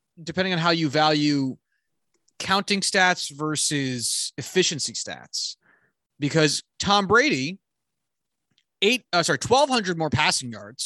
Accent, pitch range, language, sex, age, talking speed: American, 135-185 Hz, English, male, 20-39, 110 wpm